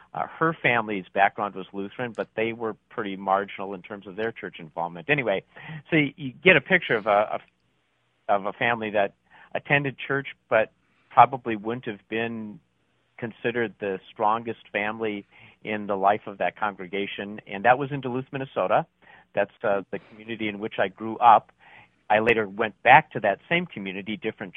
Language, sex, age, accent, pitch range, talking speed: English, male, 50-69, American, 100-120 Hz, 175 wpm